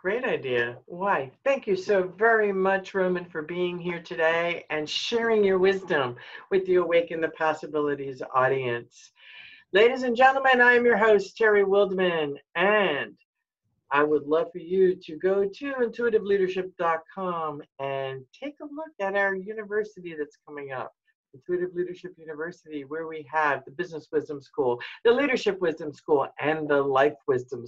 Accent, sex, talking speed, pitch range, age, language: American, female, 150 wpm, 150-200 Hz, 50-69, English